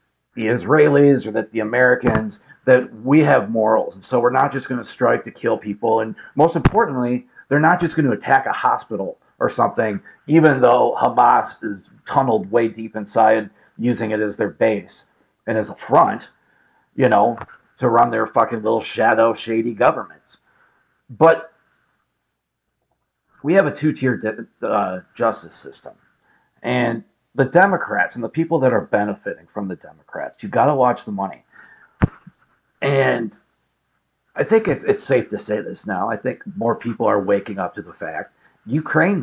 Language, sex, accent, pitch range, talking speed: English, male, American, 110-155 Hz, 165 wpm